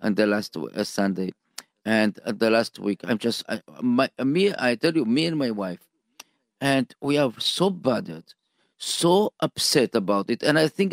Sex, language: male, English